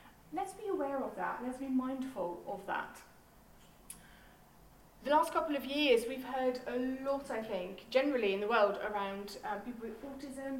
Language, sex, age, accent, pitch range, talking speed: English, female, 30-49, British, 225-295 Hz, 170 wpm